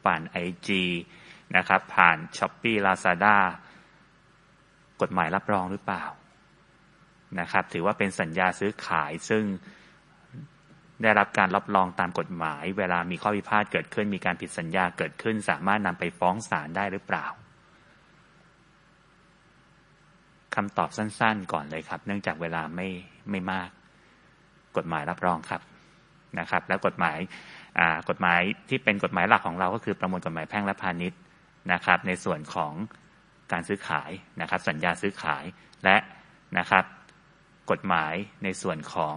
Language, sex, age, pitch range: English, male, 20-39, 90-110 Hz